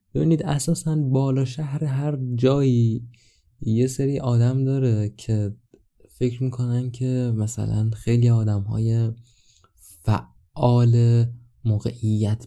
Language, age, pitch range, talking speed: Persian, 20-39, 100-125 Hz, 95 wpm